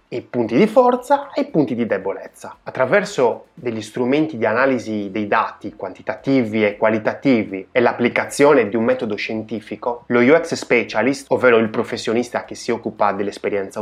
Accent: native